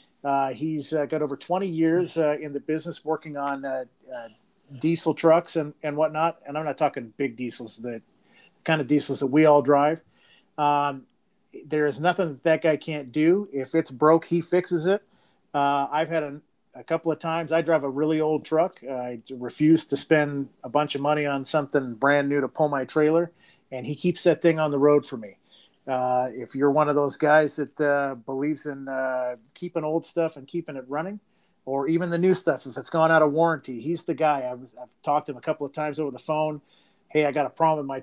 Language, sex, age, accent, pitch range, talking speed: English, male, 40-59, American, 140-160 Hz, 225 wpm